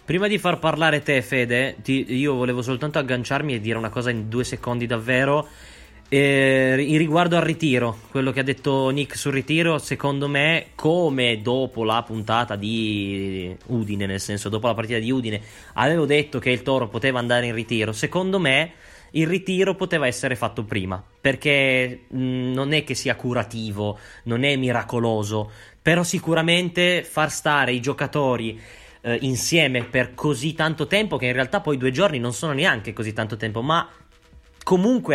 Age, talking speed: 20-39, 165 wpm